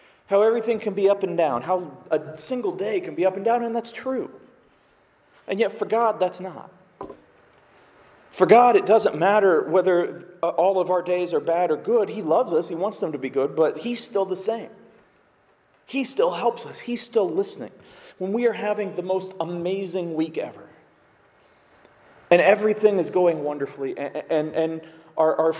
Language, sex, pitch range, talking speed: English, male, 175-235 Hz, 185 wpm